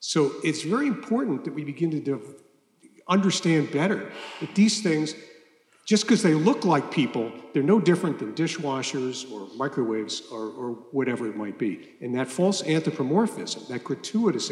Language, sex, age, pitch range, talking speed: English, male, 50-69, 130-180 Hz, 155 wpm